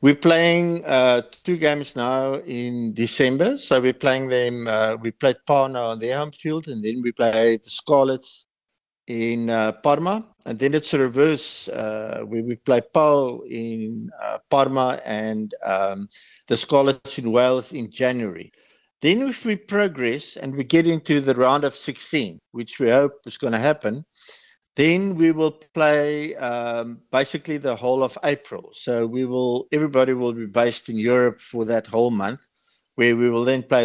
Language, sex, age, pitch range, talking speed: English, male, 60-79, 115-145 Hz, 175 wpm